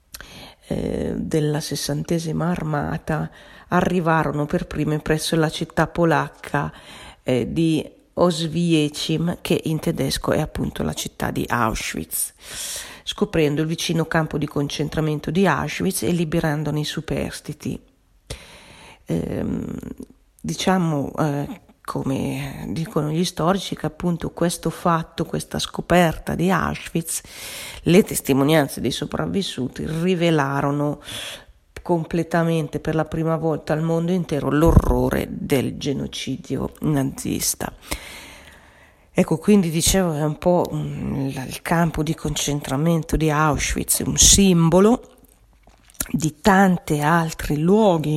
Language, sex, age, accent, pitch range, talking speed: Italian, female, 40-59, native, 150-170 Hz, 105 wpm